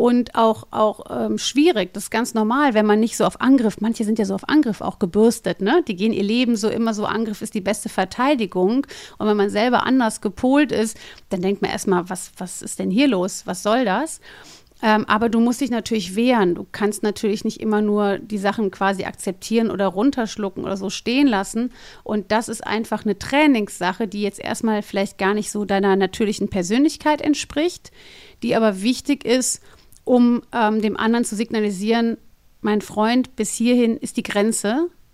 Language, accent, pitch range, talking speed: German, German, 205-240 Hz, 195 wpm